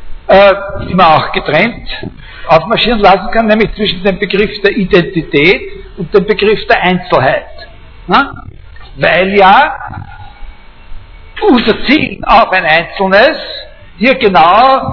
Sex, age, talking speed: male, 60-79, 115 wpm